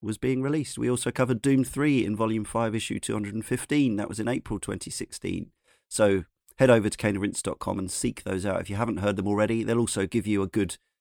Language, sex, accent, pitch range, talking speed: English, male, British, 100-120 Hz, 215 wpm